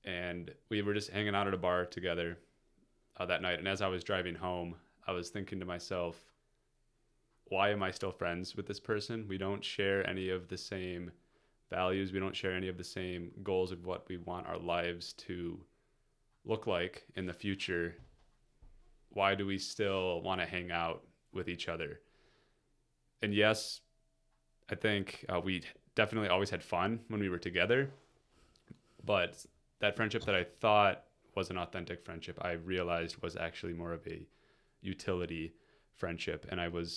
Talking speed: 175 wpm